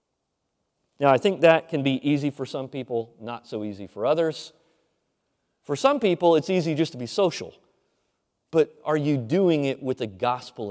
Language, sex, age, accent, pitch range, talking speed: English, male, 30-49, American, 120-175 Hz, 180 wpm